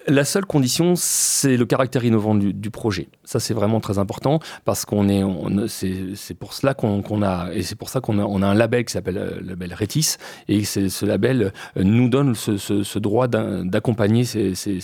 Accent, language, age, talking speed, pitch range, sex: French, French, 30-49, 225 wpm, 100-120 Hz, male